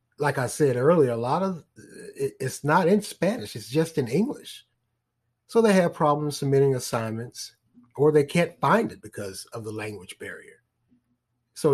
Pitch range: 120-145 Hz